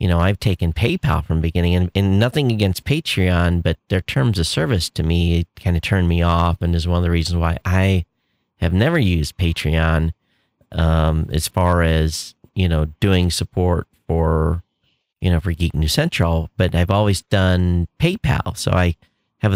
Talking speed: 185 wpm